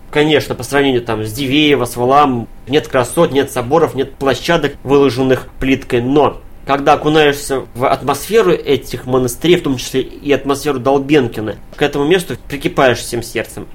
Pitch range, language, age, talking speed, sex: 125-155 Hz, Russian, 20-39, 155 wpm, male